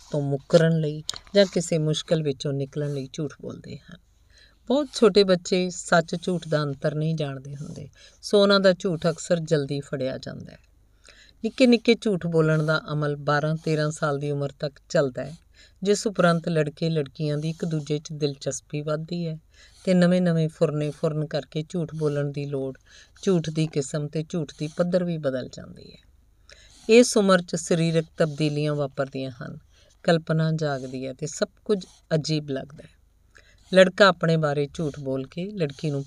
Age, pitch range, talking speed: 50-69, 145-175 Hz, 155 wpm